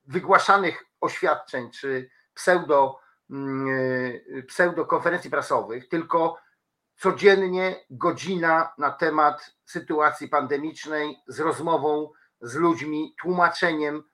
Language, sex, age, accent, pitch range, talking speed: Polish, male, 50-69, native, 140-170 Hz, 75 wpm